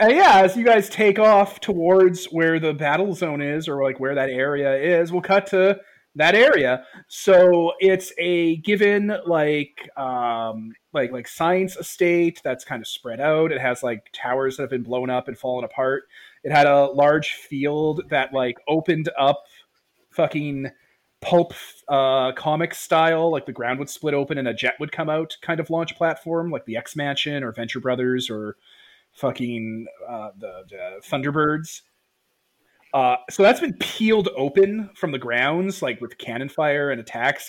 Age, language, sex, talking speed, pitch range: 30-49, English, male, 175 wpm, 130-170 Hz